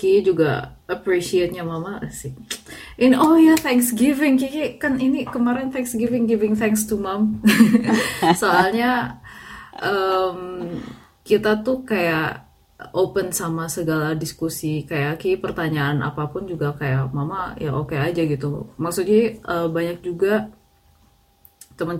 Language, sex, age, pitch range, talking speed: Indonesian, female, 20-39, 150-200 Hz, 125 wpm